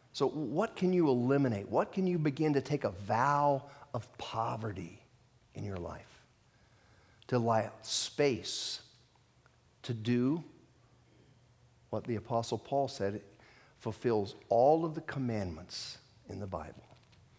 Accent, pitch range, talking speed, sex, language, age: American, 110-135 Hz, 130 wpm, male, English, 50-69